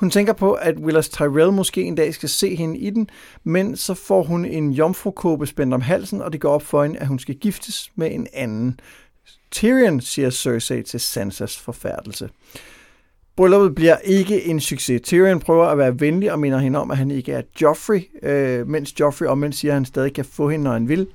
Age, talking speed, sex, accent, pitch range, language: 60-79, 215 wpm, male, native, 140-185 Hz, Danish